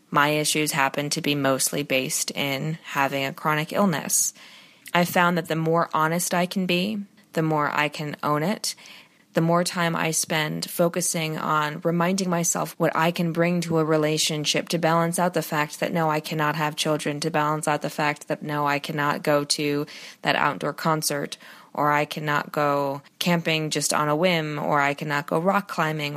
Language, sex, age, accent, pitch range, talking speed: English, female, 20-39, American, 150-175 Hz, 190 wpm